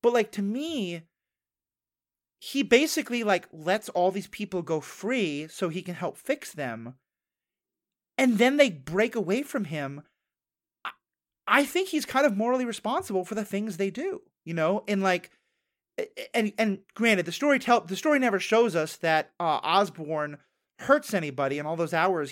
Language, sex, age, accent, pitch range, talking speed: English, male, 30-49, American, 160-240 Hz, 165 wpm